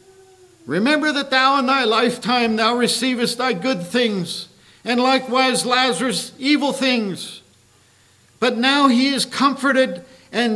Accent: American